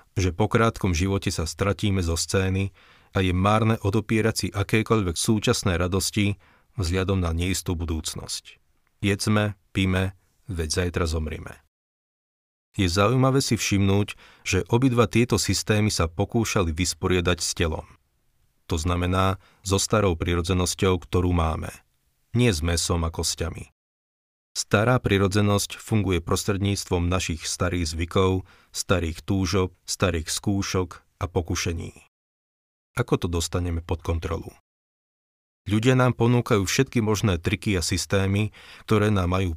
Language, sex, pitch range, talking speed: Slovak, male, 85-100 Hz, 120 wpm